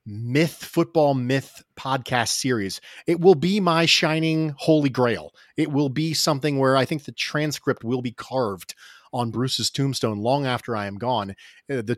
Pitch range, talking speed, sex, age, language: 120-155 Hz, 165 wpm, male, 30-49, English